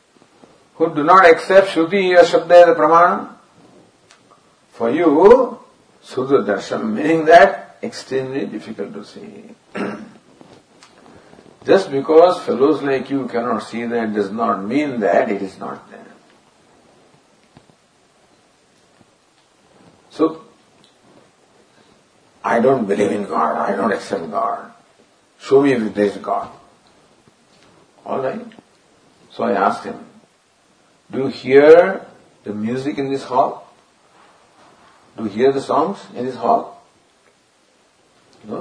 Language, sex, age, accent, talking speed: English, male, 60-79, Indian, 110 wpm